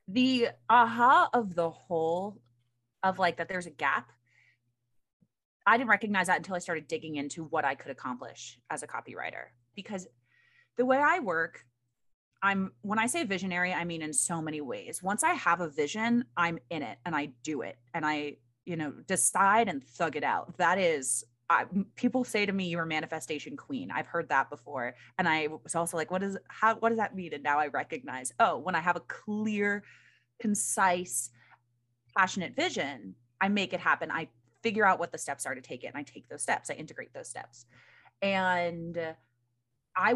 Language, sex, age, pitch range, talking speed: English, female, 20-39, 155-205 Hz, 195 wpm